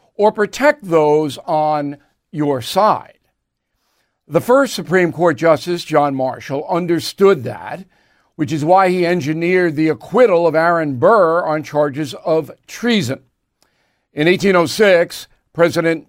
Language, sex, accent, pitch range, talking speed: English, male, American, 155-195 Hz, 120 wpm